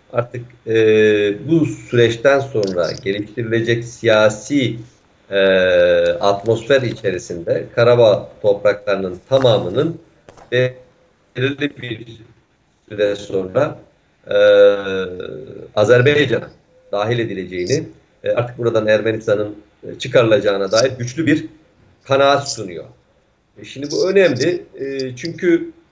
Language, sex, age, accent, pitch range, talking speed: Turkish, male, 50-69, native, 110-140 Hz, 85 wpm